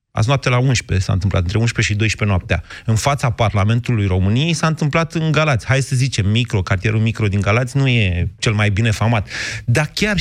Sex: male